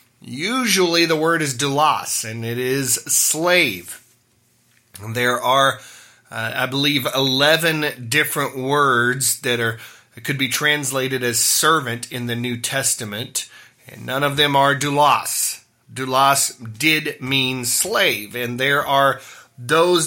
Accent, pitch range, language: American, 120-155 Hz, English